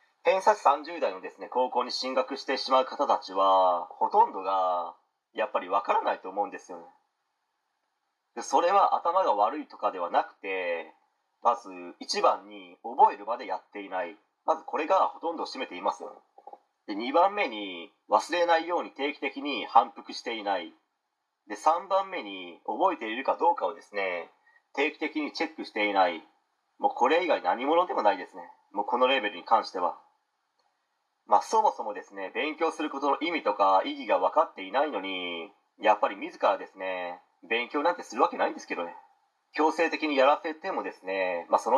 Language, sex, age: Japanese, male, 40-59